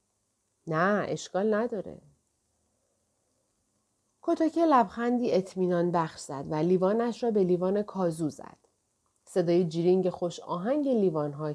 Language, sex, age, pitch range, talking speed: Persian, female, 40-59, 165-235 Hz, 105 wpm